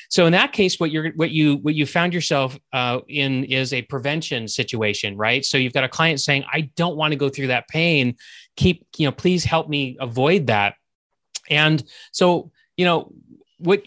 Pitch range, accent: 125-155 Hz, American